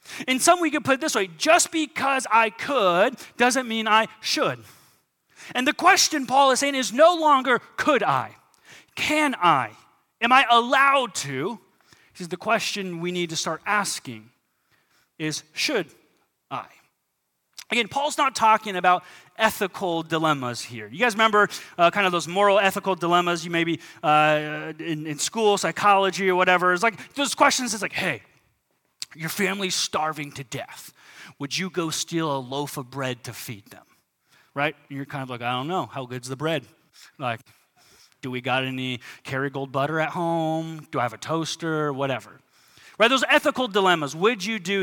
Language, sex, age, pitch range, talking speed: English, male, 30-49, 150-225 Hz, 175 wpm